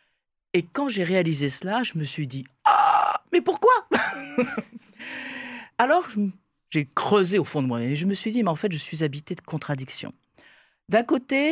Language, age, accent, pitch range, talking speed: French, 40-59, French, 150-220 Hz, 200 wpm